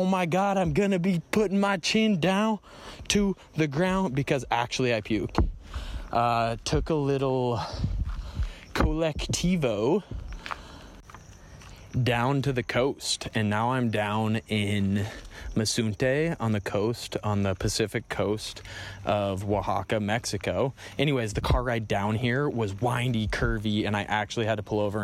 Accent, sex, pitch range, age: American, male, 105-135 Hz, 20-39